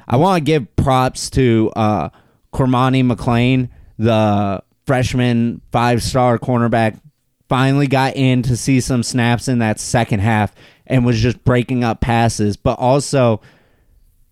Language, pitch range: English, 115-130 Hz